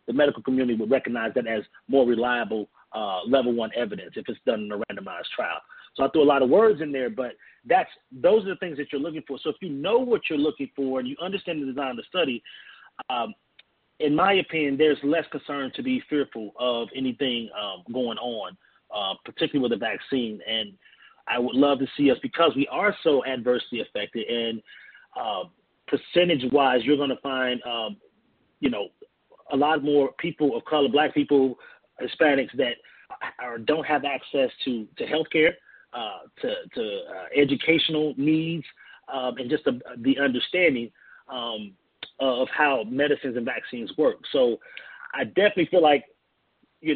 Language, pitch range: English, 125-165 Hz